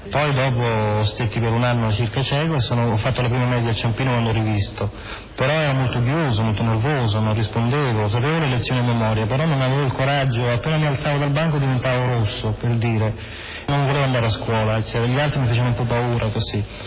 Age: 30-49